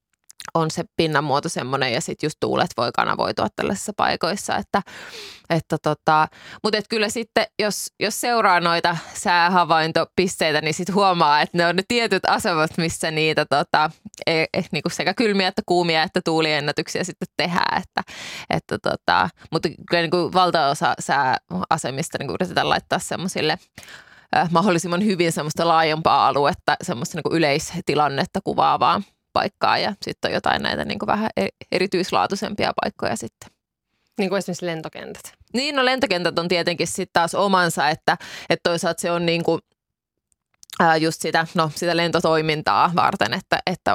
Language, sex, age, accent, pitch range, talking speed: Finnish, female, 20-39, native, 160-195 Hz, 145 wpm